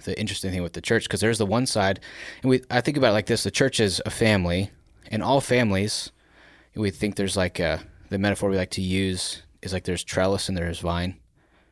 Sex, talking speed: male, 235 wpm